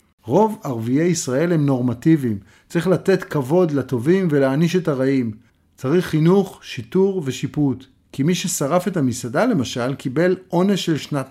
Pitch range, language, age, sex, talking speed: 130-180 Hz, Hebrew, 50-69, male, 140 wpm